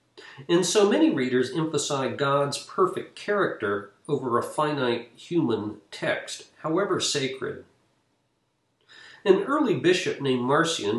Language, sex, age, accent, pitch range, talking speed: English, male, 50-69, American, 120-160 Hz, 110 wpm